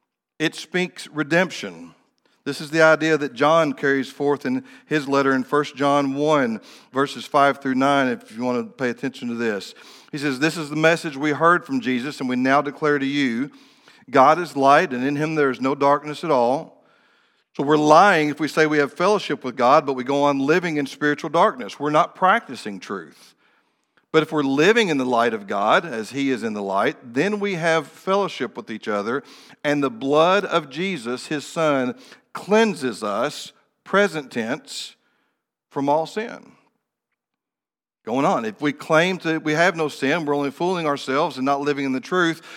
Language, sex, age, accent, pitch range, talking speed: English, male, 50-69, American, 135-170 Hz, 195 wpm